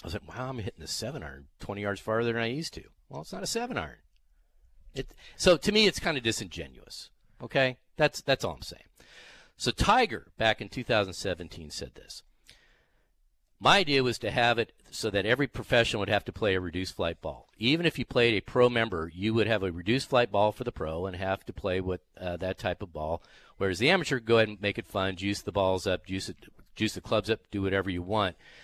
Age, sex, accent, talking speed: 50-69, male, American, 225 wpm